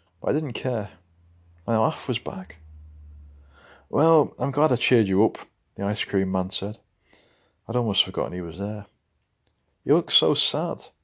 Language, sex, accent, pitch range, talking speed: English, male, British, 85-110 Hz, 160 wpm